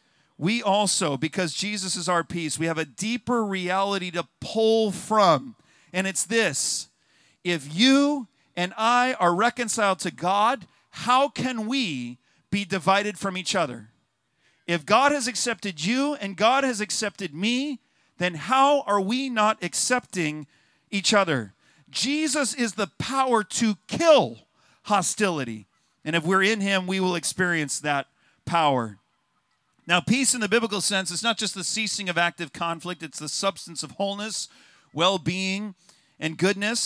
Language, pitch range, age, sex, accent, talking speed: English, 175-225 Hz, 40-59, male, American, 150 wpm